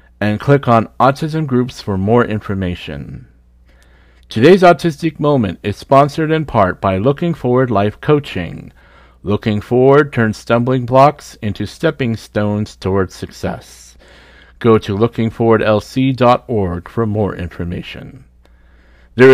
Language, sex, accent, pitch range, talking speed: English, male, American, 95-135 Hz, 115 wpm